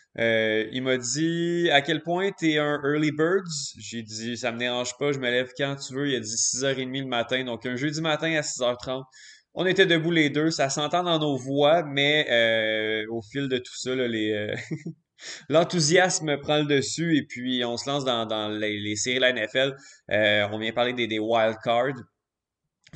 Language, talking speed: French, 220 wpm